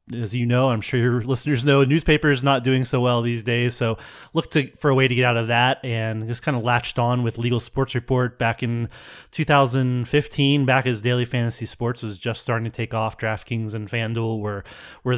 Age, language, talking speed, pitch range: 20-39, English, 220 wpm, 110-125 Hz